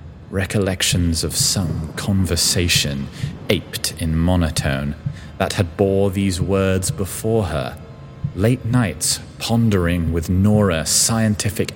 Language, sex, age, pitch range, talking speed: English, male, 30-49, 75-95 Hz, 100 wpm